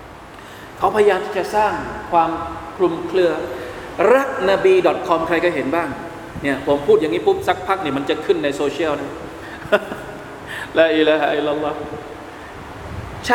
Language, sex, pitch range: Thai, male, 160-215 Hz